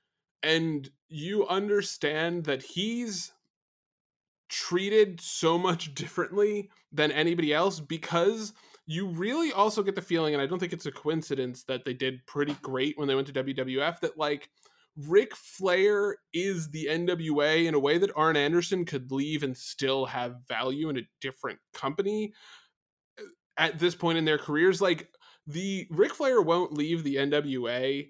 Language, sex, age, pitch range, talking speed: English, male, 20-39, 140-190 Hz, 155 wpm